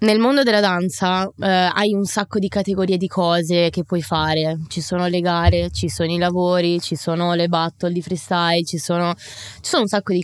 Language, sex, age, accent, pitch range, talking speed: Italian, female, 20-39, native, 170-205 Hz, 210 wpm